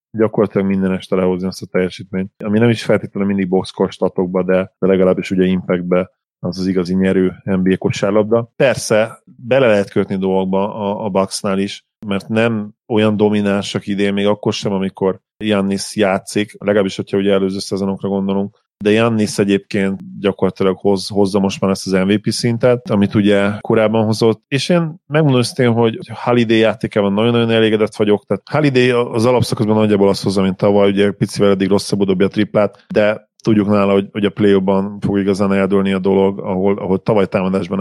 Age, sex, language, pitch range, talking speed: 30-49, male, Hungarian, 95-105 Hz, 165 wpm